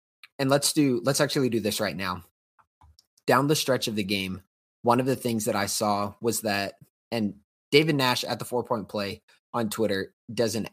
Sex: male